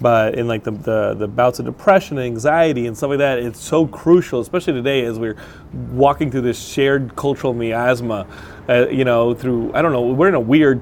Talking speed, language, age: 215 wpm, English, 30-49